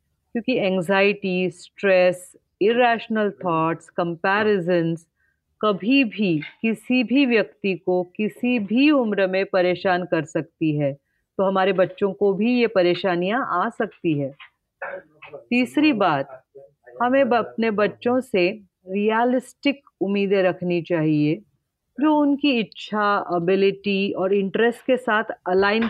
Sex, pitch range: female, 180-235 Hz